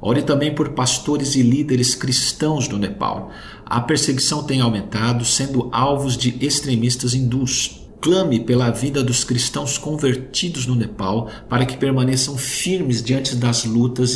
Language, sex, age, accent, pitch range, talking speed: Portuguese, male, 50-69, Brazilian, 120-135 Hz, 140 wpm